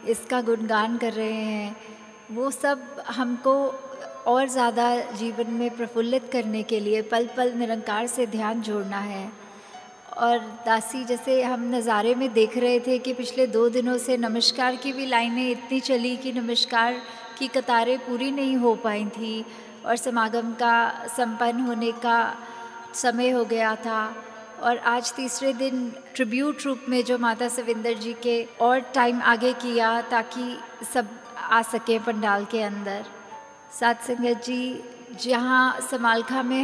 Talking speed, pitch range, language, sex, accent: 150 wpm, 230-250 Hz, Hindi, female, native